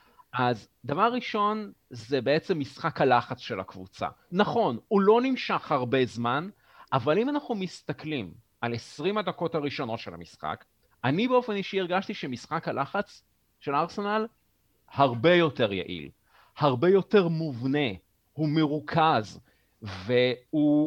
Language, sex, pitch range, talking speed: Hebrew, male, 130-195 Hz, 120 wpm